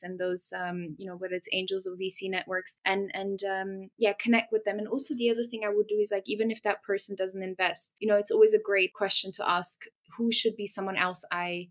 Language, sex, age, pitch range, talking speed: English, female, 20-39, 185-210 Hz, 250 wpm